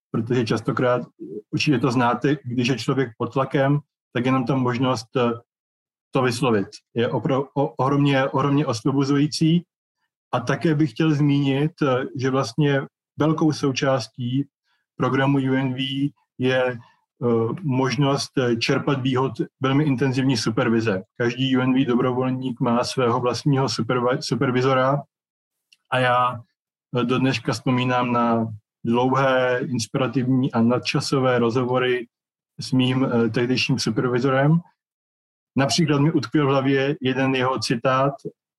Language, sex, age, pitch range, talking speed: Czech, male, 20-39, 125-140 Hz, 105 wpm